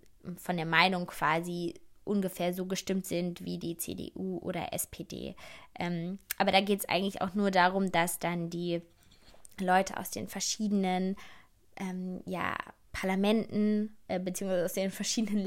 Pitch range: 180-210 Hz